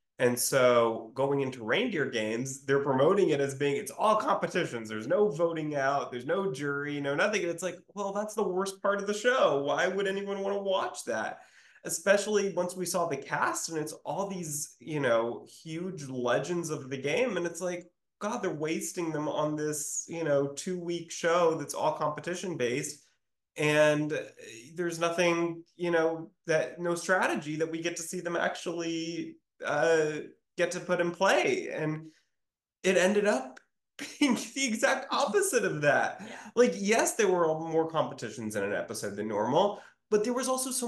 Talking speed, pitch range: 180 wpm, 150-195 Hz